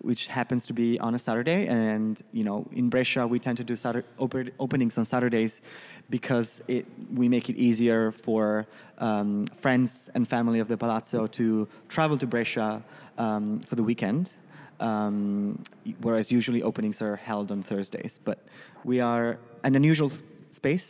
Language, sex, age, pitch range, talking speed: English, male, 20-39, 115-140 Hz, 155 wpm